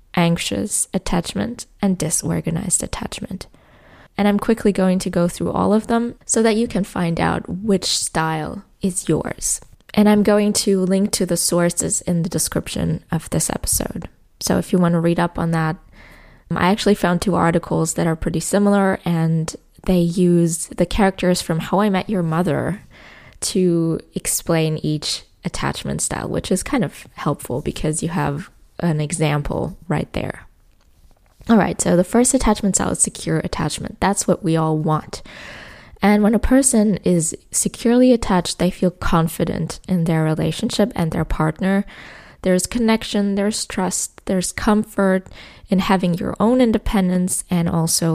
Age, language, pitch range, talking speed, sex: 20-39, English, 165-200 Hz, 160 wpm, female